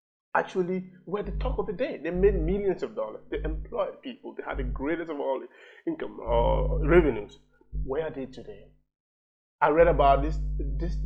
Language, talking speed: English, 180 wpm